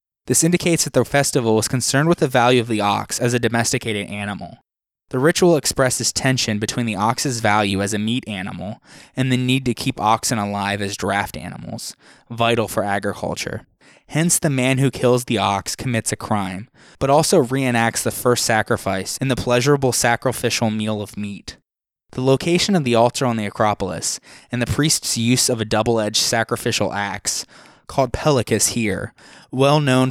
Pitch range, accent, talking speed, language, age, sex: 105-130 Hz, American, 170 wpm, English, 20-39, male